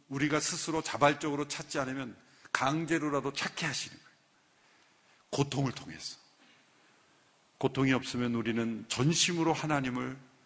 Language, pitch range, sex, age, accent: Korean, 140-185 Hz, male, 50-69, native